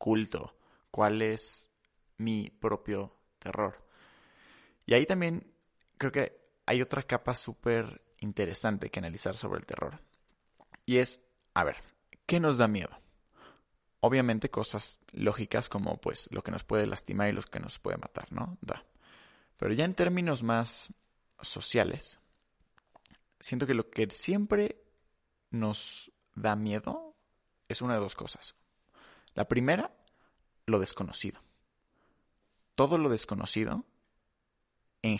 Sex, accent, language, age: male, Mexican, Spanish, 20-39